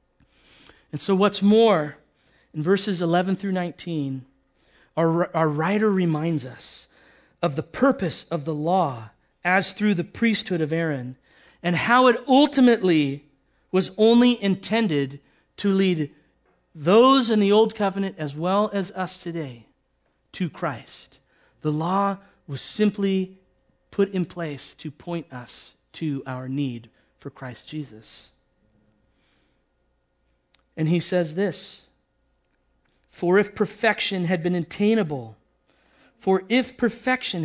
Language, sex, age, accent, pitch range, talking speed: English, male, 40-59, American, 160-220 Hz, 120 wpm